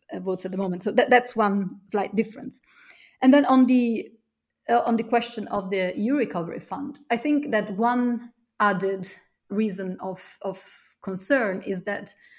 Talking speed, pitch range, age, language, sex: 165 wpm, 185-235 Hz, 30-49, English, female